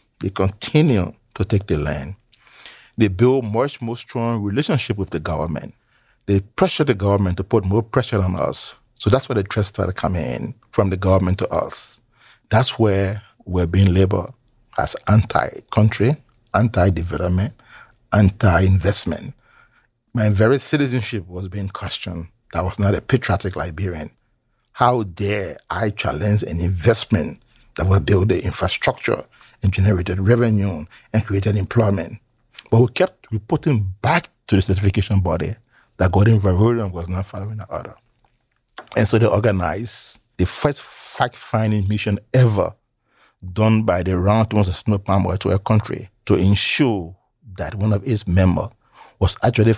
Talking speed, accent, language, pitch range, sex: 145 wpm, Nigerian, English, 95-115 Hz, male